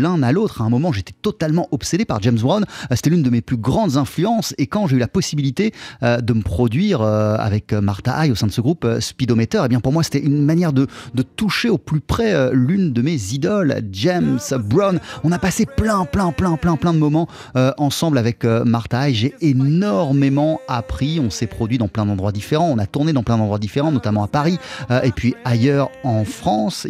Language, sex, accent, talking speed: French, male, French, 210 wpm